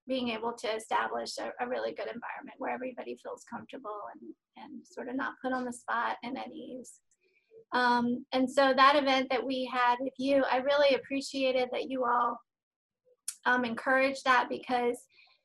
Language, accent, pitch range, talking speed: English, American, 245-270 Hz, 175 wpm